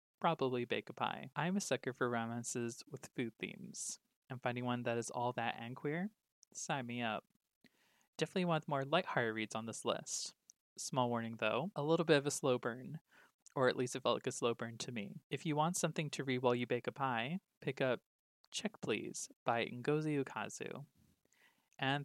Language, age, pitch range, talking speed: English, 20-39, 125-160 Hz, 200 wpm